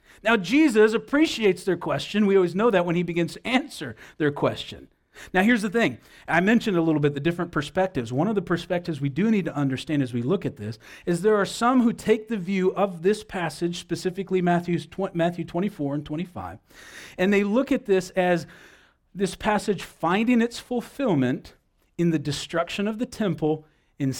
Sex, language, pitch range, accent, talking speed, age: male, English, 160-220 Hz, American, 190 wpm, 40-59